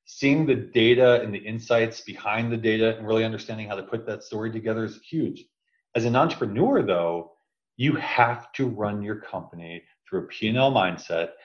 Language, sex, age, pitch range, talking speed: English, male, 40-59, 100-130 Hz, 190 wpm